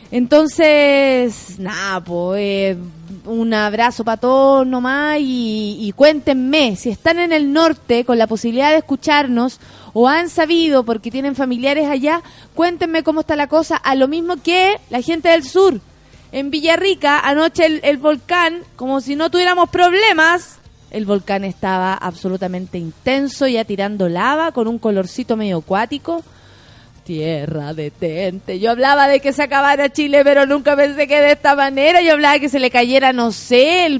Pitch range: 225-315 Hz